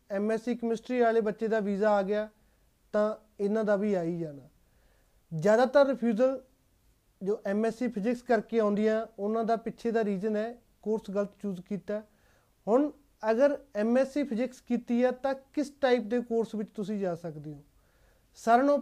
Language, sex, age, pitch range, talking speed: Punjabi, male, 30-49, 205-245 Hz, 150 wpm